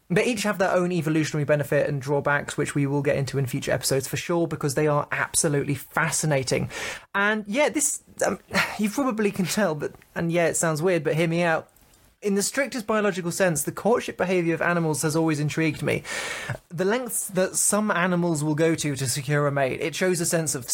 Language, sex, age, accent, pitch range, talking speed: English, male, 20-39, British, 155-200 Hz, 210 wpm